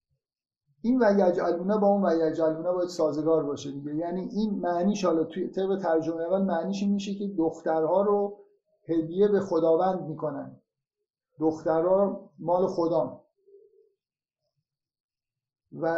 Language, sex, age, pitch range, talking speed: Persian, male, 50-69, 160-190 Hz, 110 wpm